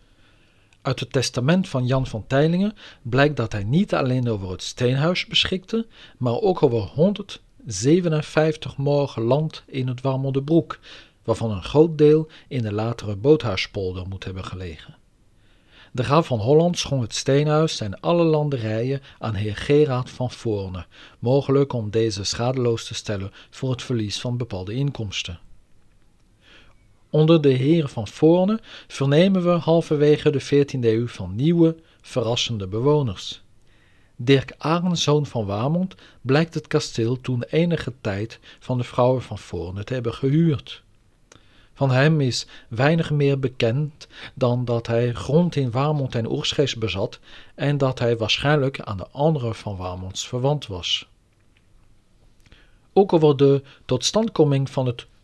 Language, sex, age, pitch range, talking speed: Dutch, male, 50-69, 110-150 Hz, 140 wpm